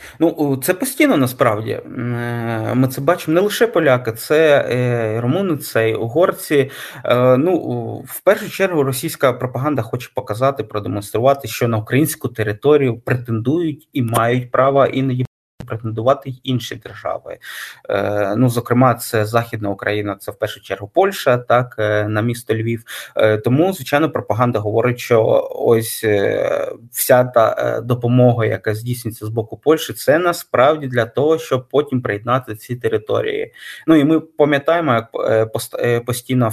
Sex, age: male, 20-39